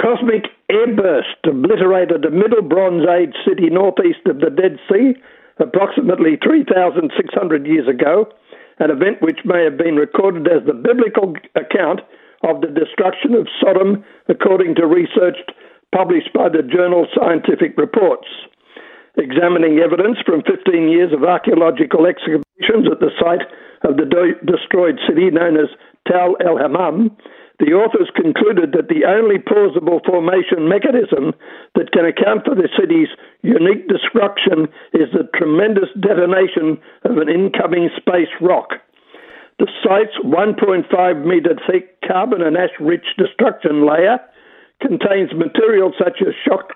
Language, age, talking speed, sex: English, 60-79, 130 wpm, male